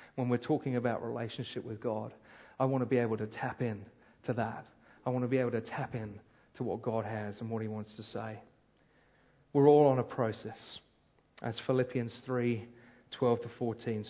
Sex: male